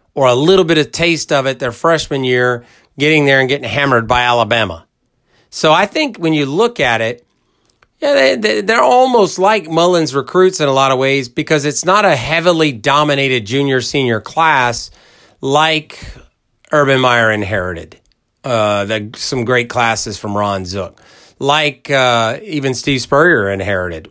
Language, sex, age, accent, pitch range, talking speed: English, male, 40-59, American, 110-150 Hz, 160 wpm